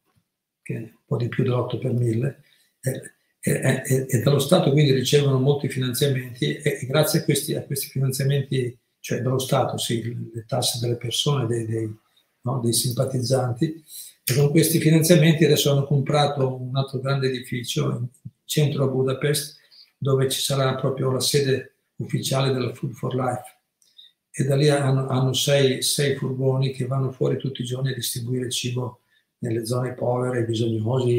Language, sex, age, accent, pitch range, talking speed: Italian, male, 50-69, native, 125-145 Hz, 165 wpm